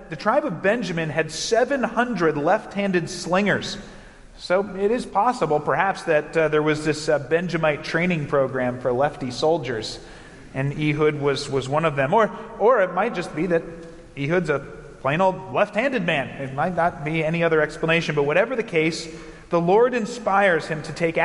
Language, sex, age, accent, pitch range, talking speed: English, male, 30-49, American, 150-195 Hz, 175 wpm